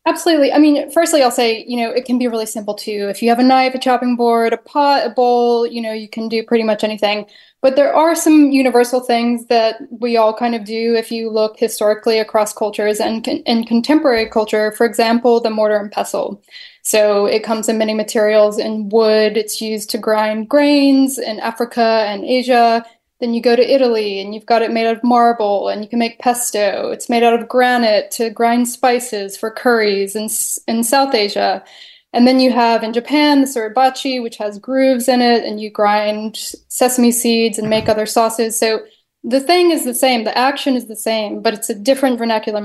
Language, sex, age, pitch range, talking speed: English, female, 10-29, 220-255 Hz, 210 wpm